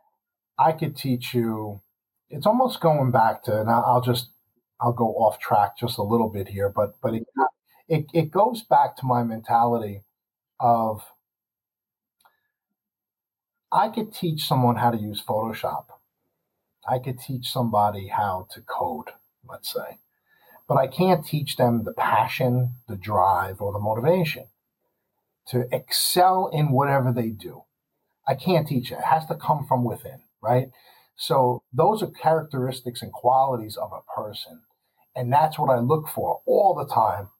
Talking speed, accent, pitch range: 155 wpm, American, 120-160 Hz